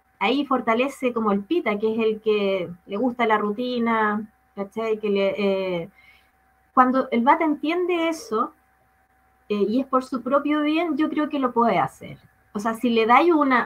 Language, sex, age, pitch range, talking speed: English, female, 20-39, 220-270 Hz, 180 wpm